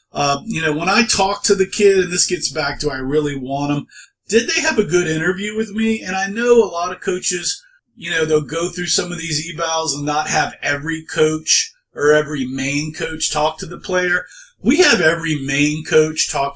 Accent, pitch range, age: American, 145-190 Hz, 40-59